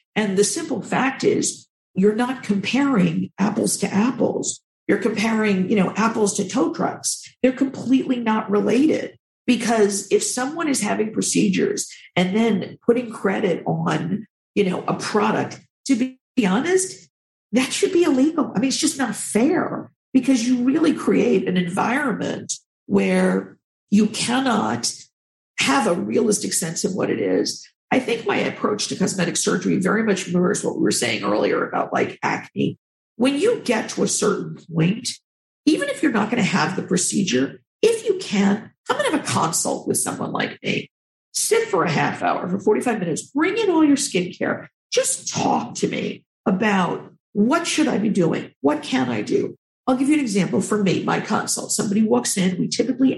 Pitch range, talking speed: 200-265 Hz, 175 wpm